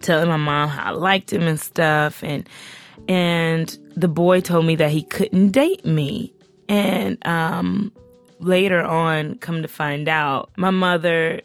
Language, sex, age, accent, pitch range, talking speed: English, female, 20-39, American, 155-205 Hz, 155 wpm